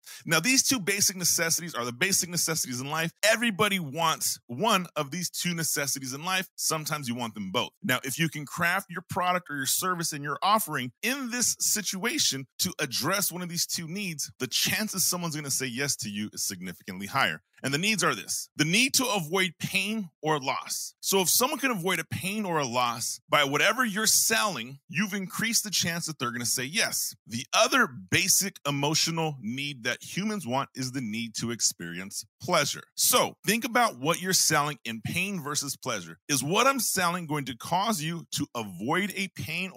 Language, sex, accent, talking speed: English, male, American, 200 wpm